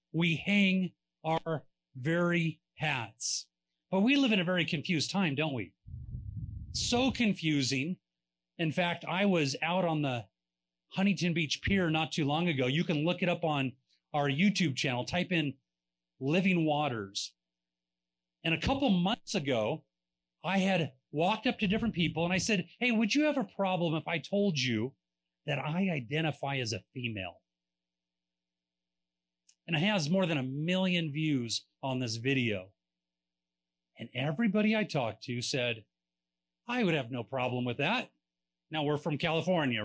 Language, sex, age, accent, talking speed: English, male, 30-49, American, 155 wpm